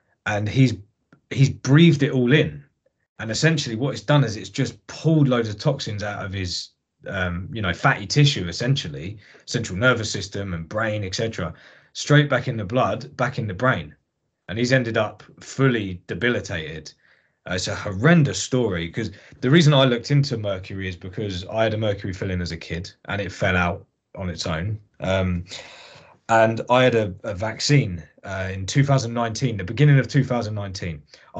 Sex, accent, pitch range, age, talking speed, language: male, British, 100-135 Hz, 20-39, 175 wpm, English